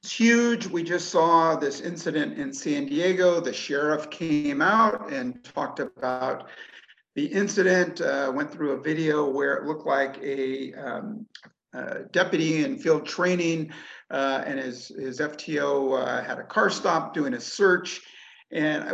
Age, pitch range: 50-69, 145-200 Hz